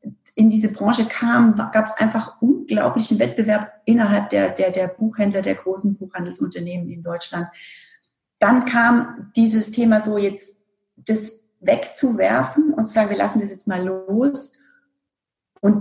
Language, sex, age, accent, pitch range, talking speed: German, female, 40-59, German, 180-225 Hz, 135 wpm